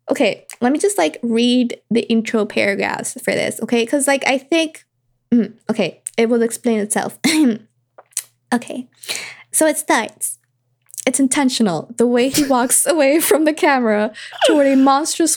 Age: 20-39